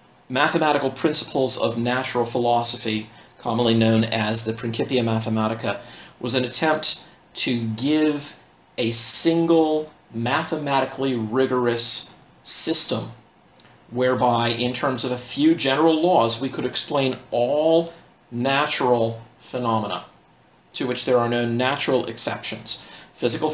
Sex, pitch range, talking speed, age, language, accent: male, 120-150 Hz, 110 wpm, 40-59, English, American